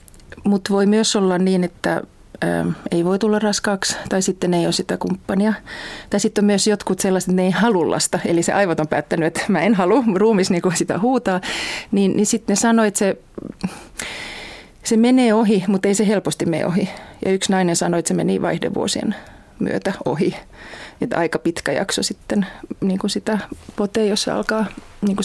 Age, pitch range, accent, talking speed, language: 30-49, 185-210 Hz, native, 190 wpm, Finnish